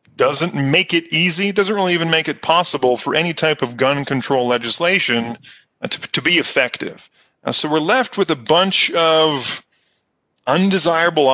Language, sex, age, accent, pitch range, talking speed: English, male, 30-49, American, 130-175 Hz, 160 wpm